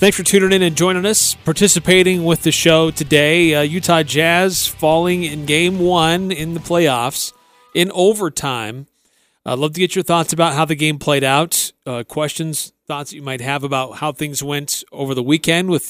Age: 40-59